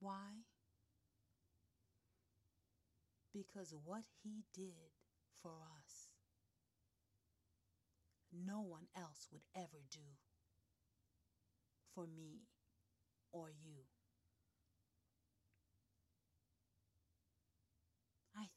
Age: 40-59